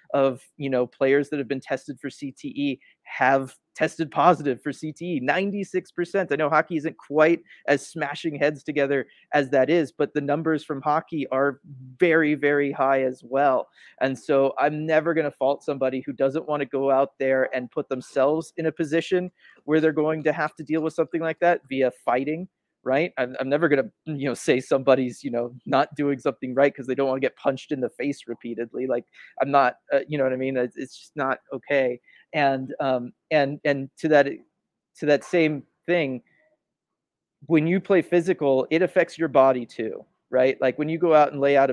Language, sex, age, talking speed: English, male, 30-49, 205 wpm